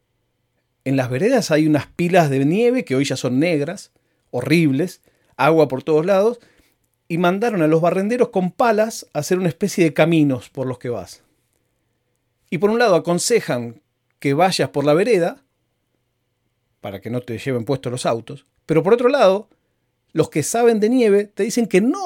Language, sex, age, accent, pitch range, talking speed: Spanish, male, 40-59, Argentinian, 125-185 Hz, 180 wpm